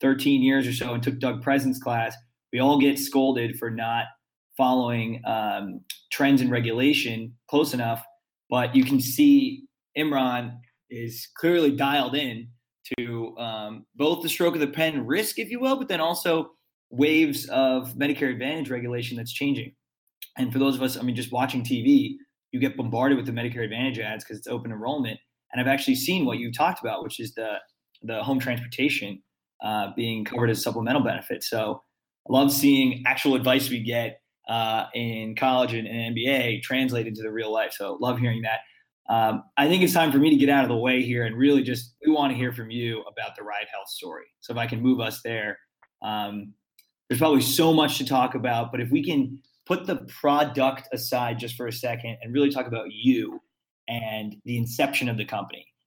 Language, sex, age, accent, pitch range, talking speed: English, male, 20-39, American, 115-140 Hz, 200 wpm